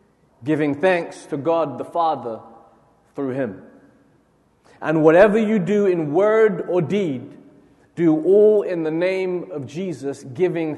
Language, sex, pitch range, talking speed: English, male, 125-180 Hz, 135 wpm